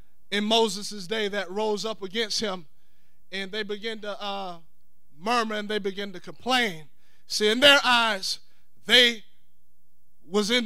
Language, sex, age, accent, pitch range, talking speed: English, male, 20-39, American, 220-290 Hz, 145 wpm